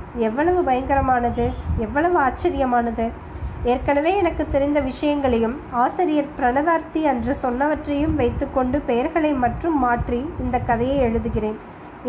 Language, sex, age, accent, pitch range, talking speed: Tamil, female, 20-39, native, 240-295 Hz, 95 wpm